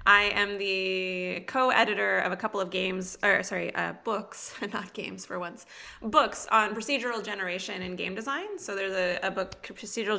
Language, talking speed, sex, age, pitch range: English, 175 wpm, female, 20-39, 185-235 Hz